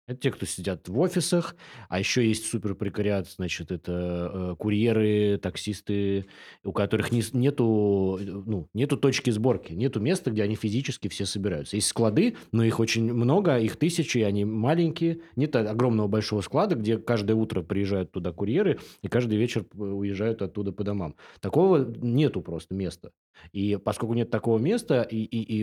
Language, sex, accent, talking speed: Russian, male, native, 160 wpm